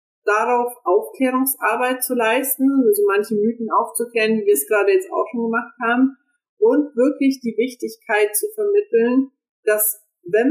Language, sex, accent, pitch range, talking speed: German, female, German, 205-335 Hz, 150 wpm